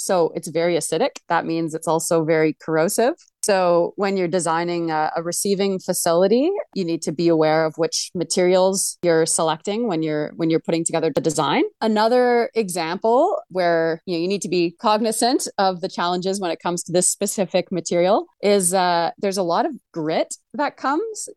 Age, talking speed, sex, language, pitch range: 30-49, 175 wpm, female, English, 170-215 Hz